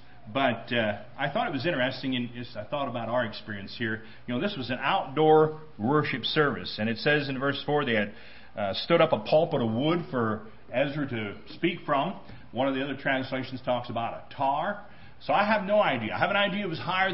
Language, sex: English, male